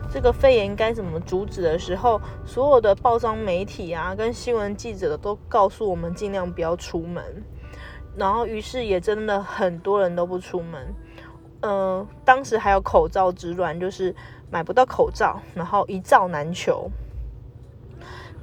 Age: 20-39